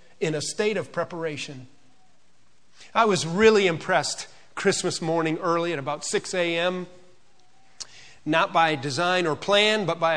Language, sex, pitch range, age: English, male, 150-185 Hz, 40-59